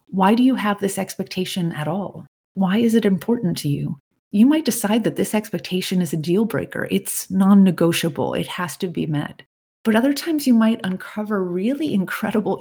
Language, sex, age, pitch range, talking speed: English, female, 30-49, 175-215 Hz, 185 wpm